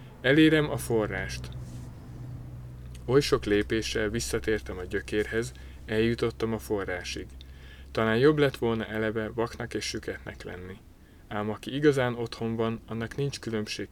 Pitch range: 100-120 Hz